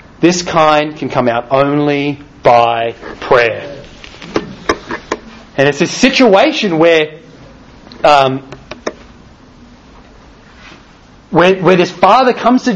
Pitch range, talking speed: 150-210 Hz, 95 wpm